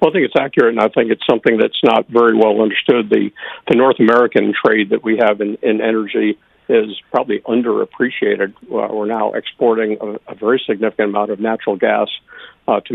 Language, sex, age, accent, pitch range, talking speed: English, male, 50-69, American, 110-120 Hz, 195 wpm